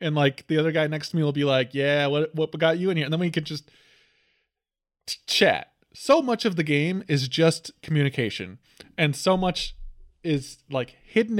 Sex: male